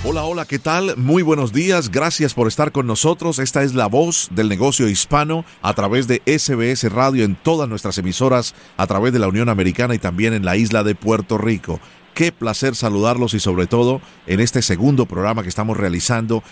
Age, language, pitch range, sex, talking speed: 40-59, Spanish, 100-130 Hz, male, 200 wpm